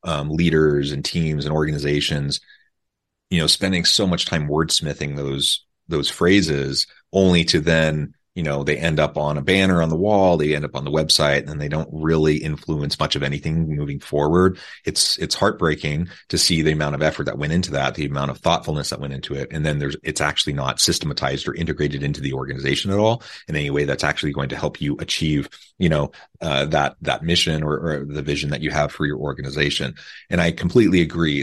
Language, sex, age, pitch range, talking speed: English, male, 30-49, 70-85 Hz, 210 wpm